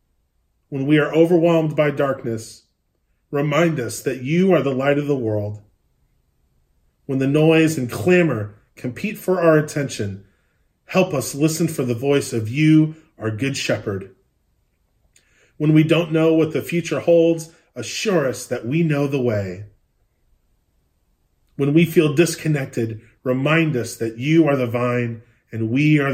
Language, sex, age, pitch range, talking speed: English, male, 30-49, 110-155 Hz, 150 wpm